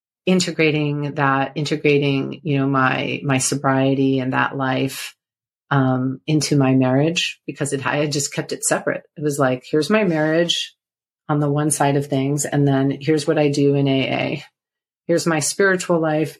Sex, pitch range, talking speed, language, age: female, 135-155 Hz, 170 wpm, English, 40-59